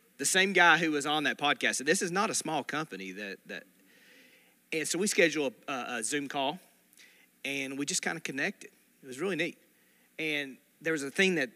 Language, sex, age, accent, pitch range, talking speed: English, male, 40-59, American, 120-150 Hz, 220 wpm